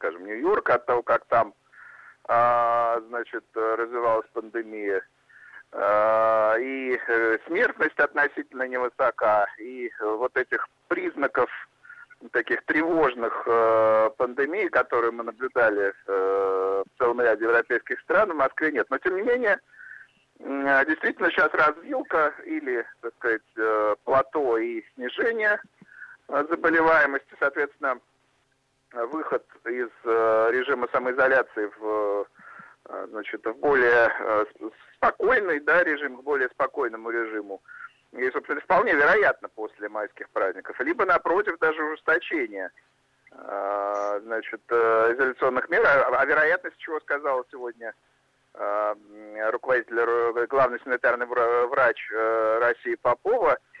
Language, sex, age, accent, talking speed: Russian, male, 50-69, native, 95 wpm